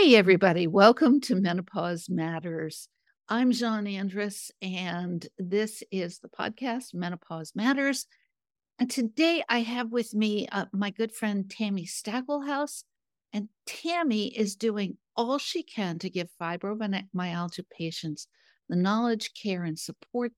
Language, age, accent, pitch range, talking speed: English, 60-79, American, 175-225 Hz, 130 wpm